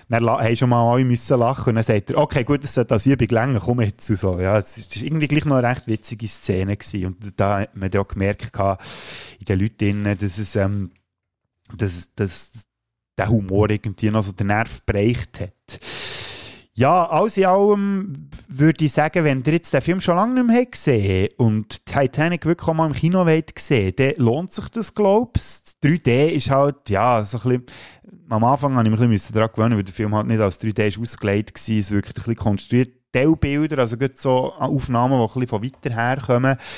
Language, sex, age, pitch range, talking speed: German, male, 30-49, 105-135 Hz, 205 wpm